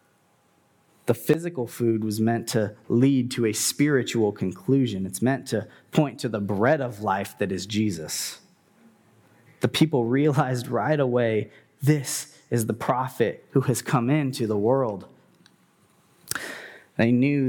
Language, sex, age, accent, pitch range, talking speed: English, male, 20-39, American, 110-130 Hz, 135 wpm